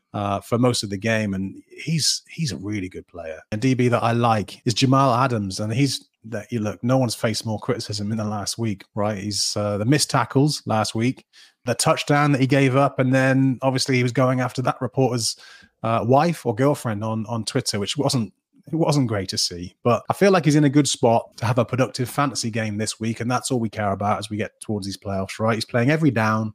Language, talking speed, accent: English, 240 wpm, British